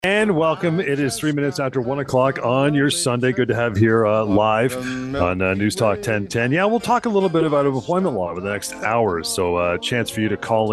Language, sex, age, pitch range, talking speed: English, male, 40-59, 90-130 Hz, 240 wpm